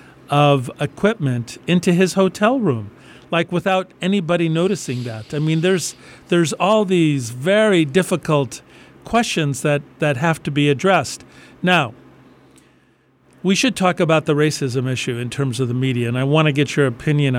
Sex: male